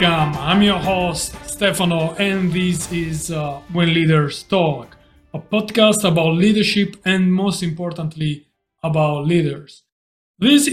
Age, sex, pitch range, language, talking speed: 30-49, male, 155-195 Hz, English, 115 wpm